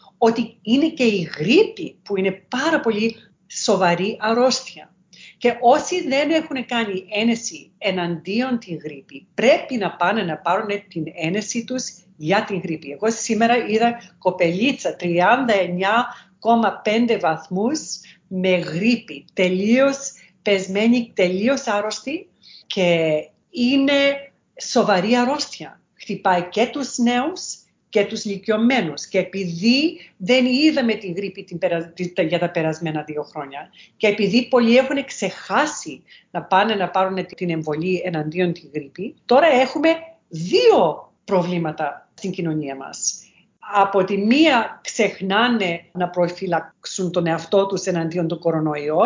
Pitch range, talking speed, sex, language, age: 175-235 Hz, 120 wpm, female, Greek, 40-59